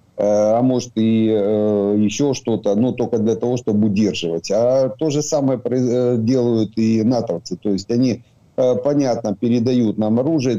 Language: Ukrainian